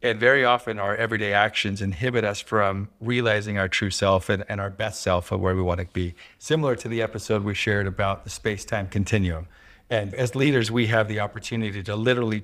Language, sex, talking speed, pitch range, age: English, male, 205 wpm, 100-120 Hz, 50-69